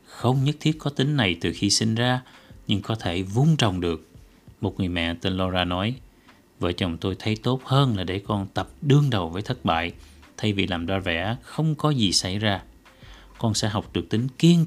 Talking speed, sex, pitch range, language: 215 wpm, male, 95-130 Hz, Vietnamese